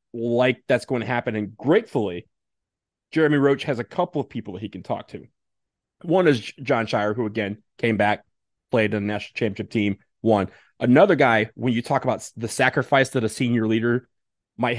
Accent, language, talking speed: American, English, 190 wpm